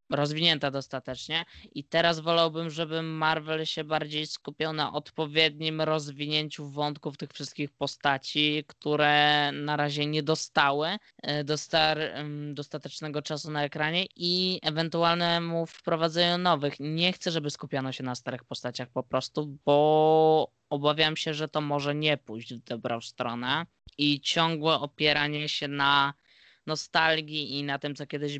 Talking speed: 130 wpm